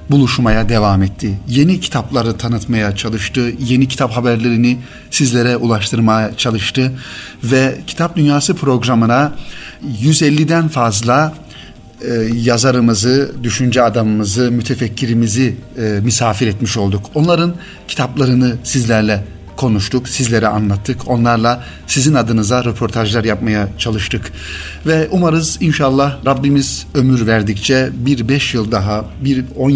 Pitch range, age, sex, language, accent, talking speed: 110-135 Hz, 40-59, male, Turkish, native, 100 wpm